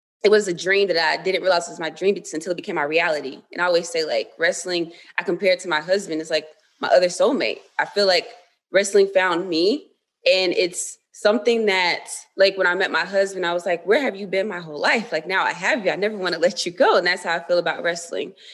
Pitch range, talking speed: 170-205 Hz, 255 wpm